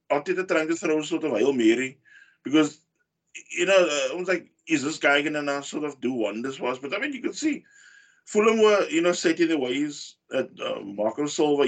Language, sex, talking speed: English, male, 215 wpm